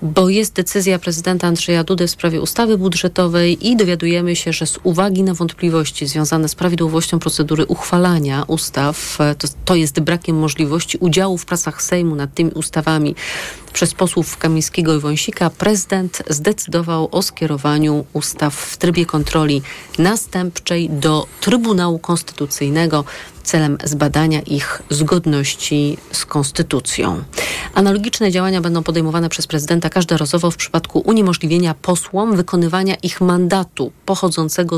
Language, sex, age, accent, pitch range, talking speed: Polish, female, 40-59, native, 155-180 Hz, 130 wpm